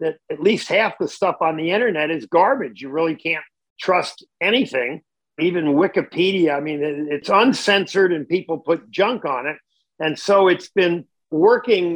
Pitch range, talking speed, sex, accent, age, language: 160-200 Hz, 165 wpm, male, American, 50-69, English